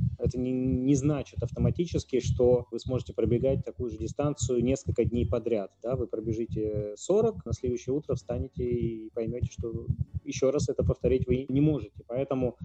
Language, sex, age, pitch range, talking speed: Russian, male, 20-39, 115-140 Hz, 160 wpm